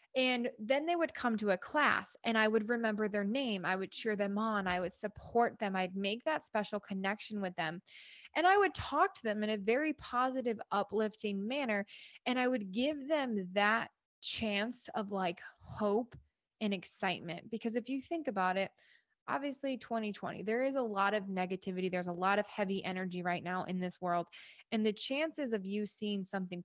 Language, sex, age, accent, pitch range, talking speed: English, female, 20-39, American, 200-255 Hz, 195 wpm